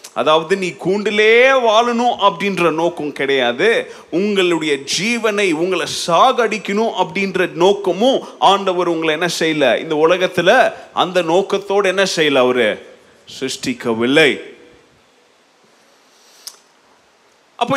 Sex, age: male, 30-49